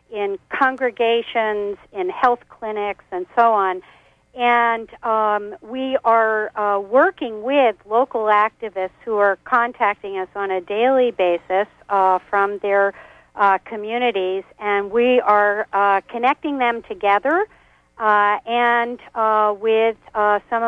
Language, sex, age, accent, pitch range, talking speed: English, female, 50-69, American, 185-225 Hz, 125 wpm